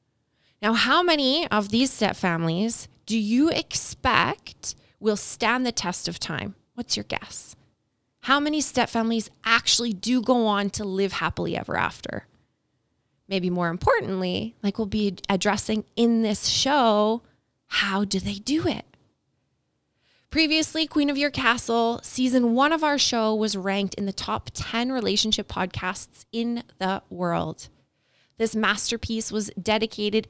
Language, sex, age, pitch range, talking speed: English, female, 20-39, 200-235 Hz, 145 wpm